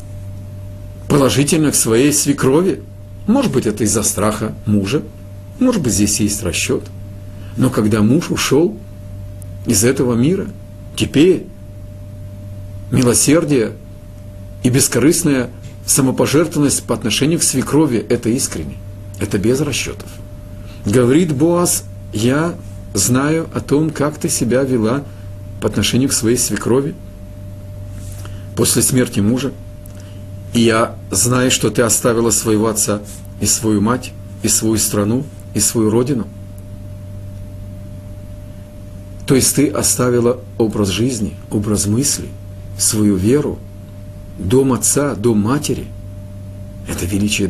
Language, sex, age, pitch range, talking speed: Russian, male, 50-69, 100-120 Hz, 110 wpm